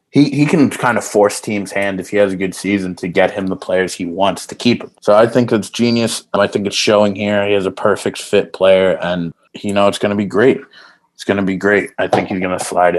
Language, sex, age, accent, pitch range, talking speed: English, male, 20-39, American, 95-120 Hz, 275 wpm